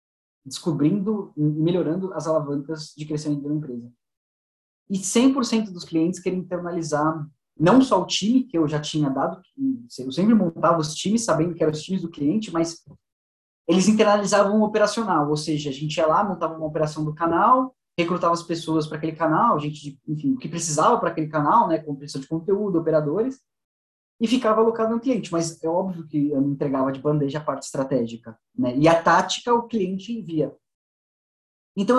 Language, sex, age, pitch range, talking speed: Portuguese, male, 20-39, 150-205 Hz, 190 wpm